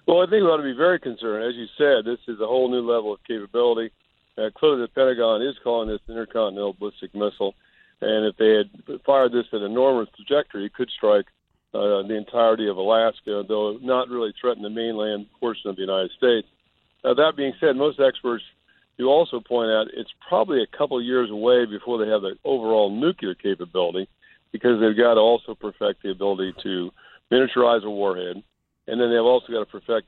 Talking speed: 210 wpm